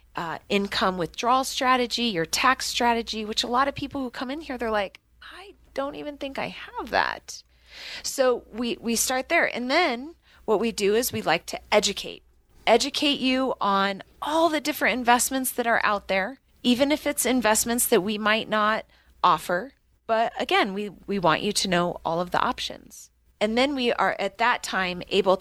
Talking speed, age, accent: 190 wpm, 30-49, American